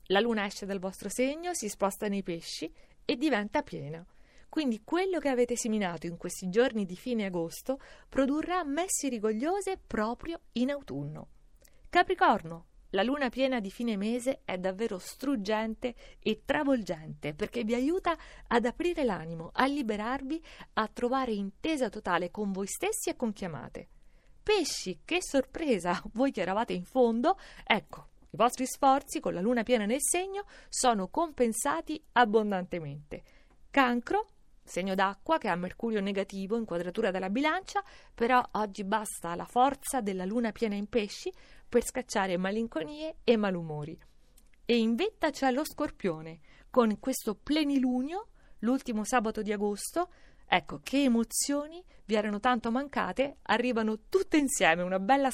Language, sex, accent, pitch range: Italian, female, native, 200-275 Hz